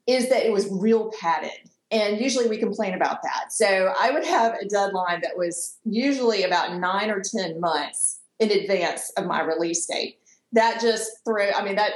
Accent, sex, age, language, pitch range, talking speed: American, female, 40-59, English, 175-225 Hz, 190 wpm